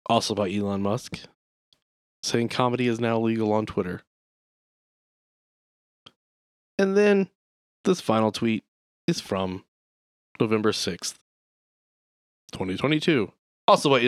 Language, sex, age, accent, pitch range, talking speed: English, male, 20-39, American, 100-140 Hz, 90 wpm